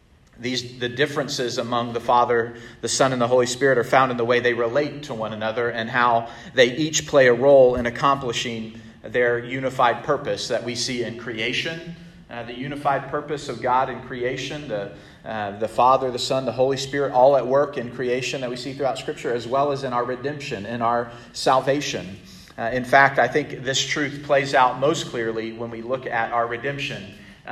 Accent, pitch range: American, 120-140 Hz